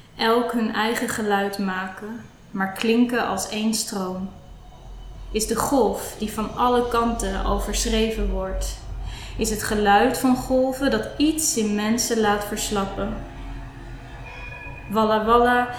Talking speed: 125 wpm